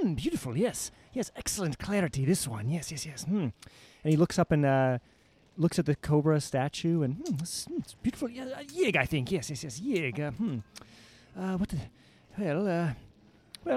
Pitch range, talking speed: 120-170 Hz, 185 wpm